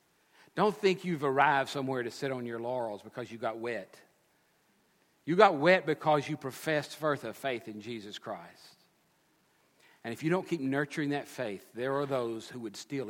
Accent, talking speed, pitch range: American, 185 wpm, 110-140 Hz